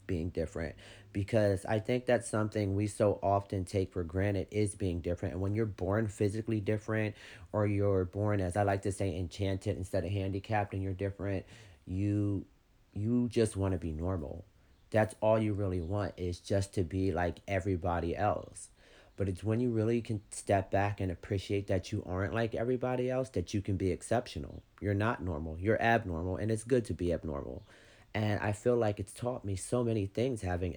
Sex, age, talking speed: male, 30-49, 195 wpm